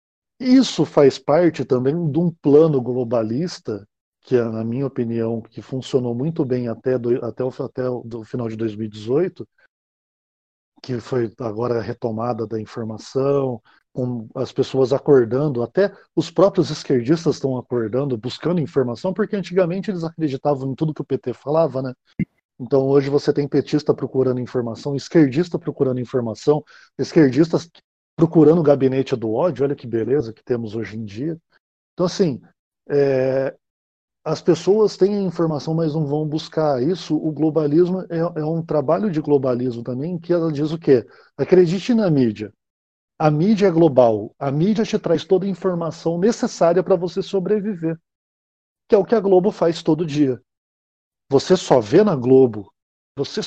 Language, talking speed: Portuguese, 160 wpm